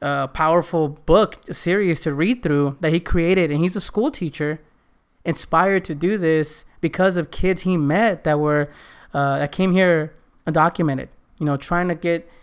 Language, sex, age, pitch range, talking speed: English, male, 20-39, 150-175 Hz, 175 wpm